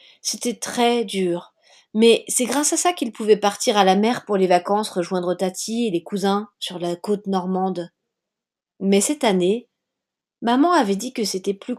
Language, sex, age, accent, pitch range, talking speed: French, female, 40-59, French, 190-240 Hz, 180 wpm